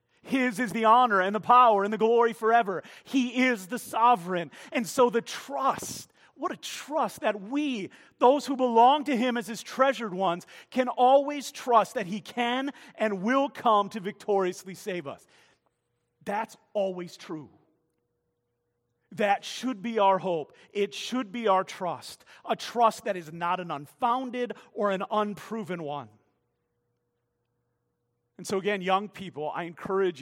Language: English